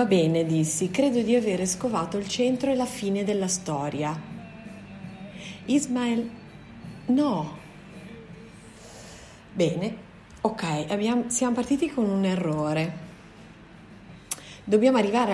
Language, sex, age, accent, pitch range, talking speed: Italian, female, 30-49, native, 170-225 Hz, 100 wpm